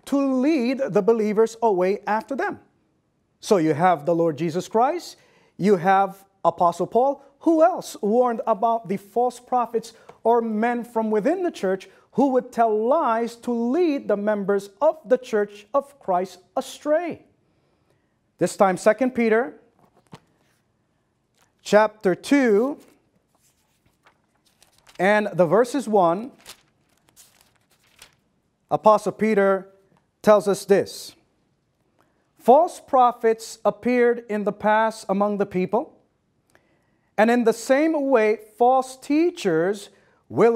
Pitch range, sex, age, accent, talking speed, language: 200-255 Hz, male, 30-49, American, 115 wpm, Filipino